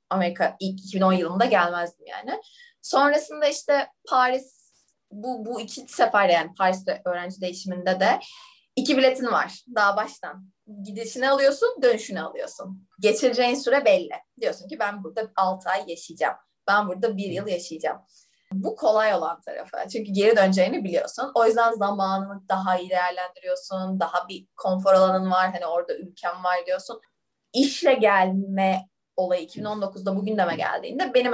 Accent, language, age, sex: native, Turkish, 20-39, female